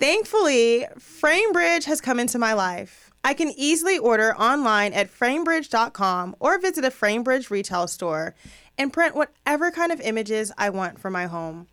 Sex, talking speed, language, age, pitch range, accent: female, 160 wpm, English, 30-49, 200-295 Hz, American